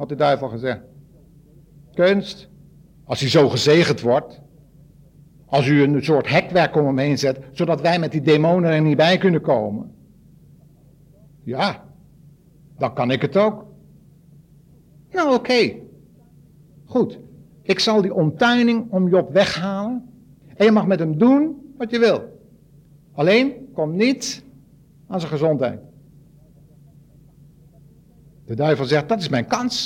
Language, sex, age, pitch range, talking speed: Dutch, male, 60-79, 150-190 Hz, 135 wpm